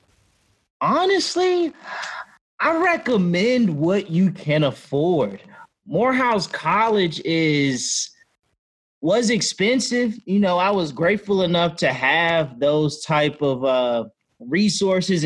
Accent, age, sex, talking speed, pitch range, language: American, 30-49, male, 100 wpm, 150-210 Hz, English